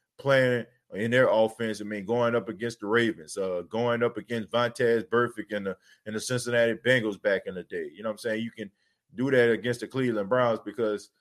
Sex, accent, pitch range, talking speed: male, American, 110-130 Hz, 215 wpm